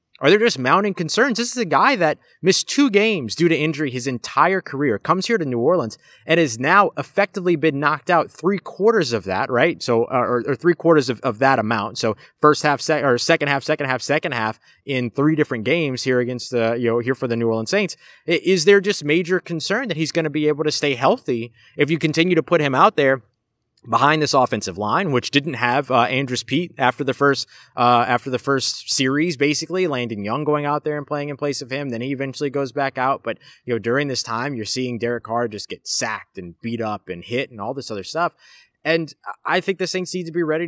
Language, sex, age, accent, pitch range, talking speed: English, male, 20-39, American, 125-165 Hz, 240 wpm